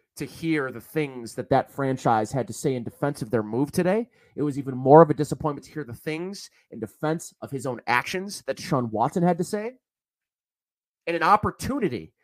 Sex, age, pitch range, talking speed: male, 30-49, 140-190 Hz, 205 wpm